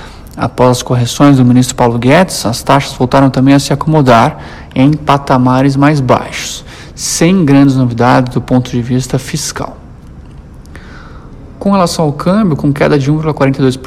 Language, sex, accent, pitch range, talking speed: Portuguese, male, Brazilian, 125-150 Hz, 145 wpm